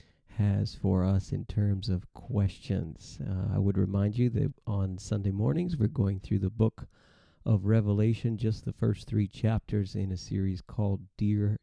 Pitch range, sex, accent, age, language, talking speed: 95-115 Hz, male, American, 40-59, English, 170 wpm